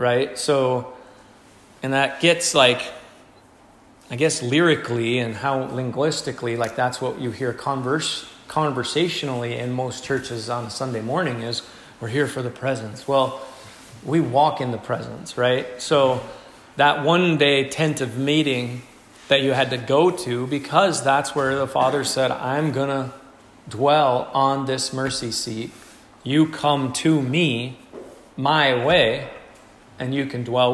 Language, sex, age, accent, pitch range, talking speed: English, male, 30-49, American, 125-150 Hz, 150 wpm